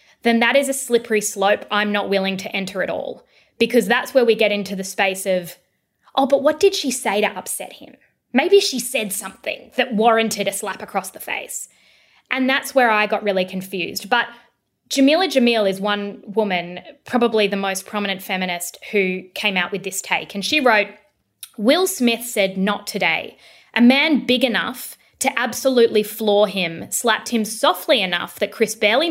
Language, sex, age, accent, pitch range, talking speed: English, female, 20-39, Australian, 195-245 Hz, 185 wpm